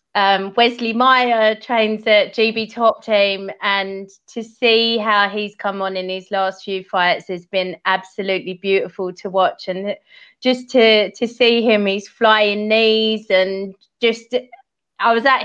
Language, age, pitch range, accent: English, 30-49, 205-245 Hz, British